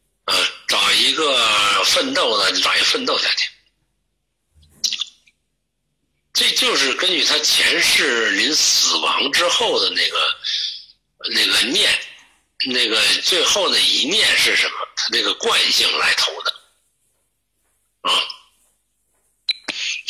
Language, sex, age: Chinese, male, 60-79